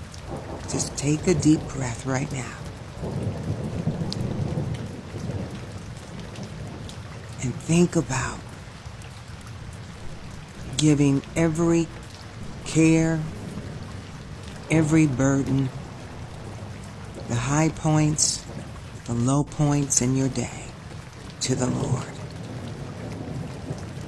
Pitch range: 120-155 Hz